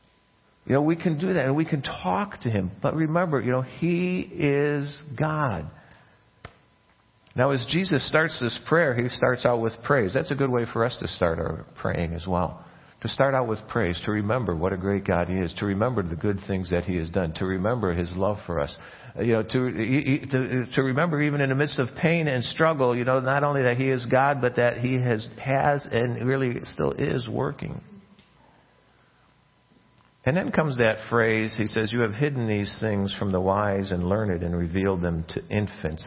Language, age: English, 50-69